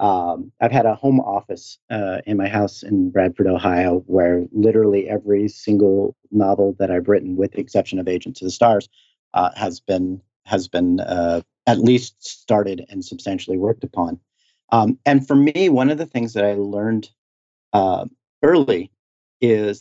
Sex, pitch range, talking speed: male, 100-125 Hz, 170 wpm